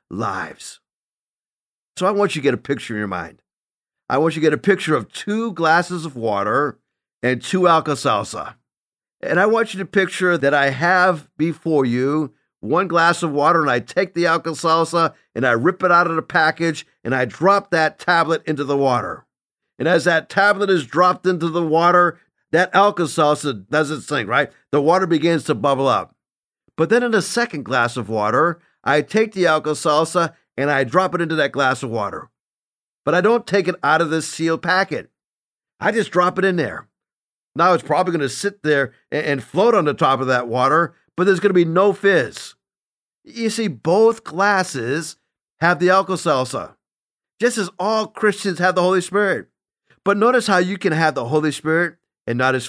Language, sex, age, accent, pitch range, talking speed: English, male, 50-69, American, 150-185 Hz, 195 wpm